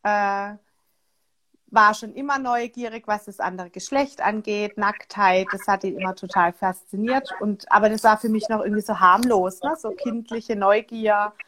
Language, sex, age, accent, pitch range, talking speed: German, female, 30-49, German, 205-245 Hz, 145 wpm